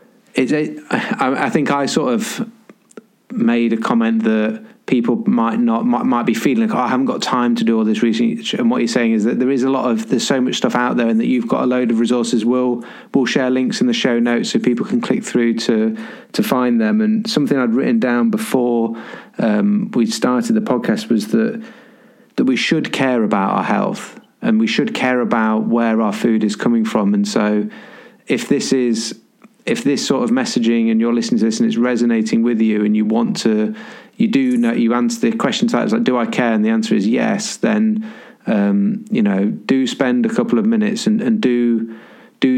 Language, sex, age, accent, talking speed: English, male, 30-49, British, 225 wpm